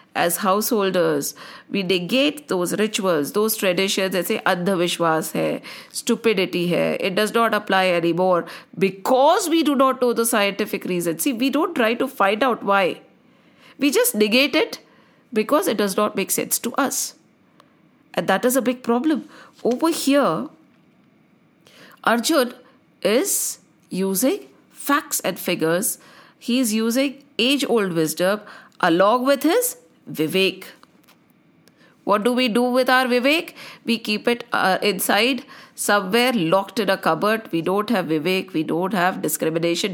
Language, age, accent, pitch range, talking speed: English, 50-69, Indian, 195-270 Hz, 145 wpm